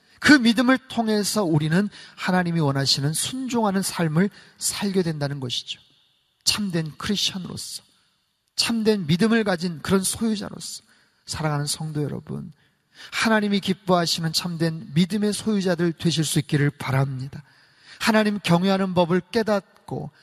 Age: 30-49